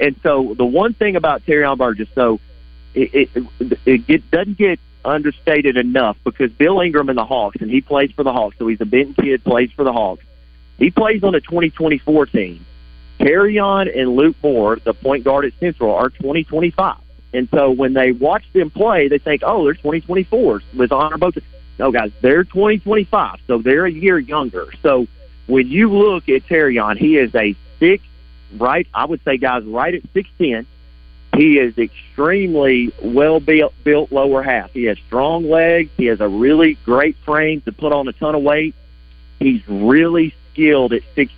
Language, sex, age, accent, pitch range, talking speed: English, male, 40-59, American, 110-165 Hz, 195 wpm